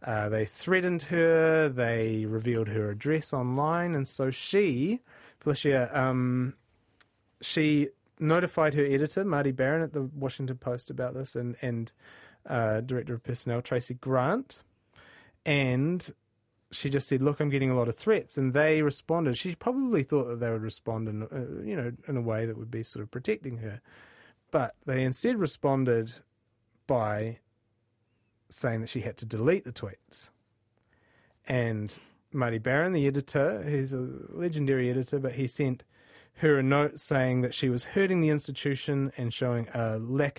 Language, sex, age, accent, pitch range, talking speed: English, male, 30-49, Australian, 115-145 Hz, 160 wpm